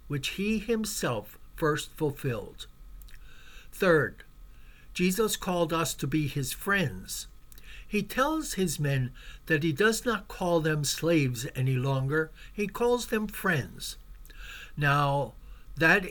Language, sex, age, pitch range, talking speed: English, male, 60-79, 140-185 Hz, 120 wpm